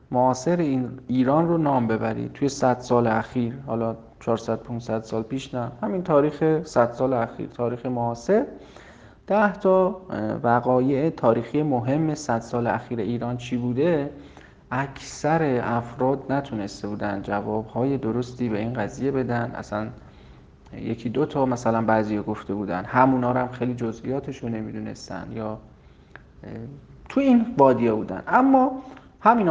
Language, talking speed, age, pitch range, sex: Persian, 130 wpm, 40-59, 115-135 Hz, male